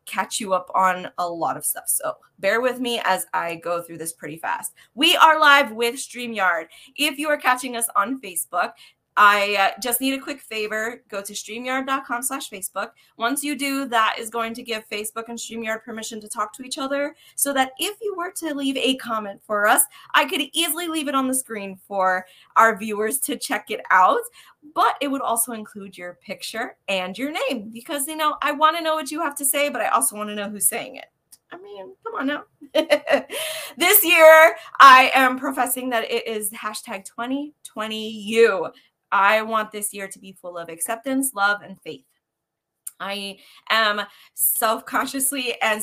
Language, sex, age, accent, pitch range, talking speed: English, female, 20-39, American, 205-270 Hz, 190 wpm